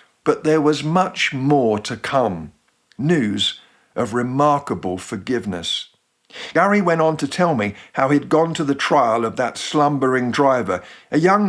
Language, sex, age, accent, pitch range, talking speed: English, male, 50-69, British, 125-160 Hz, 150 wpm